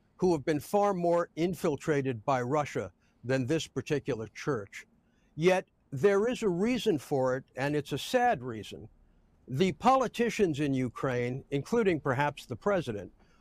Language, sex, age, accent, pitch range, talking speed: English, male, 60-79, American, 135-185 Hz, 145 wpm